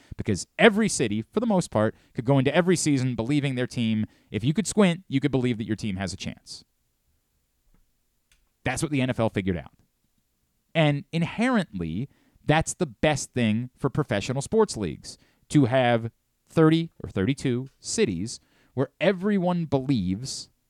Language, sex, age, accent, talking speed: English, male, 30-49, American, 155 wpm